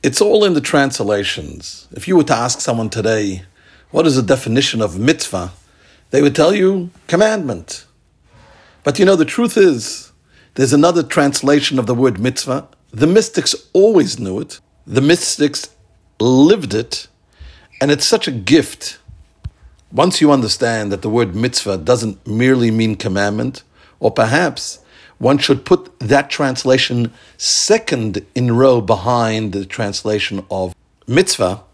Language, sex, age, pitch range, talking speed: English, male, 50-69, 105-145 Hz, 145 wpm